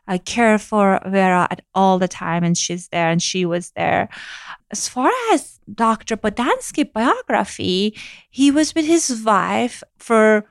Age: 30-49